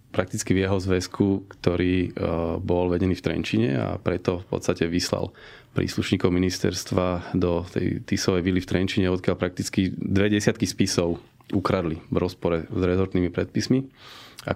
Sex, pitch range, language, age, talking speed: male, 90-105 Hz, Slovak, 30-49, 135 wpm